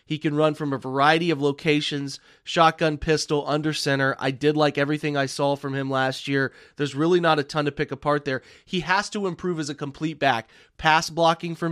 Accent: American